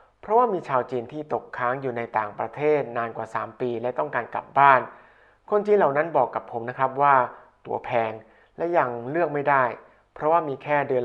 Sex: male